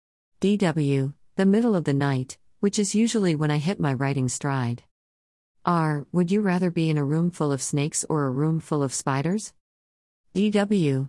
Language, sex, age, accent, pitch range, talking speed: English, female, 50-69, American, 130-185 Hz, 180 wpm